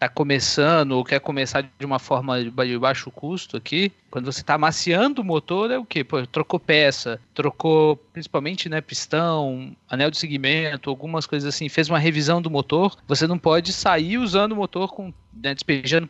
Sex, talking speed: male, 185 wpm